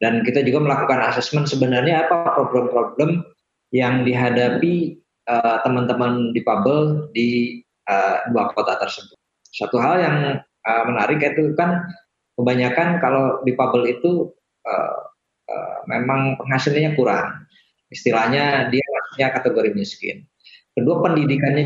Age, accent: 20-39, native